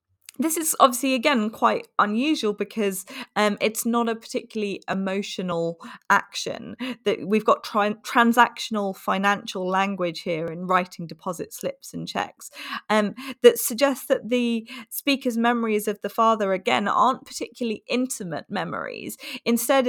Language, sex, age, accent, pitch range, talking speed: English, female, 20-39, British, 190-250 Hz, 135 wpm